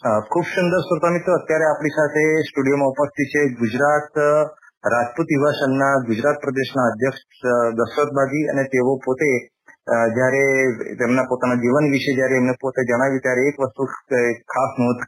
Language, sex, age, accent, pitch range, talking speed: Gujarati, male, 30-49, native, 130-145 Hz, 140 wpm